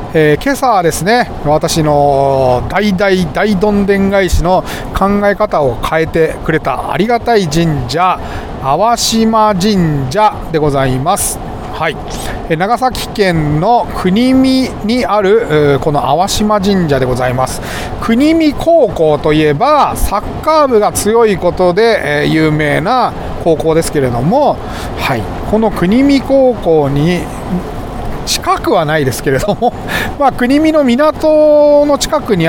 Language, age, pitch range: Japanese, 40-59, 150-235 Hz